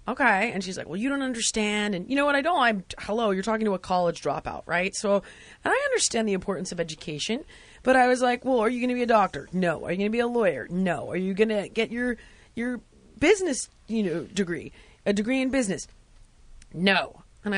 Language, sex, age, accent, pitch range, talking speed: English, female, 30-49, American, 195-250 Hz, 235 wpm